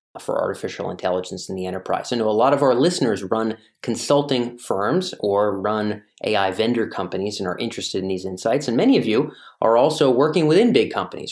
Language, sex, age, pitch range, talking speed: English, male, 30-49, 100-150 Hz, 195 wpm